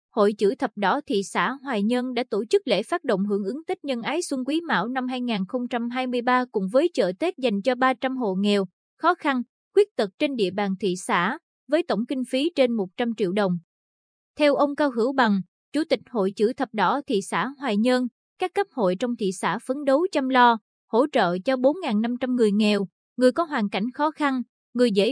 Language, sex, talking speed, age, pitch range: Vietnamese, female, 215 wpm, 20-39, 210-270 Hz